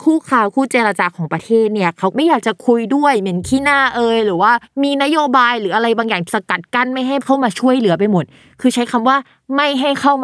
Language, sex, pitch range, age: Thai, female, 190-255 Hz, 20-39